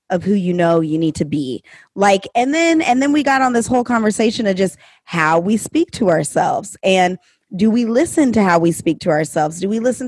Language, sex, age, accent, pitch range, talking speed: English, female, 20-39, American, 190-260 Hz, 230 wpm